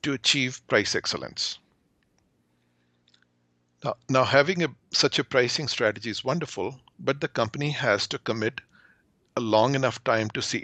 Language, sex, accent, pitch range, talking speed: English, male, Indian, 115-150 Hz, 145 wpm